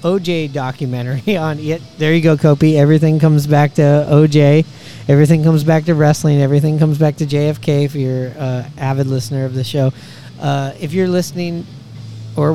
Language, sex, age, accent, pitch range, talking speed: English, male, 30-49, American, 135-155 Hz, 170 wpm